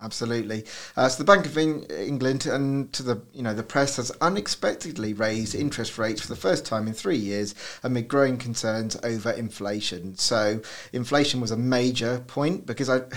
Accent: British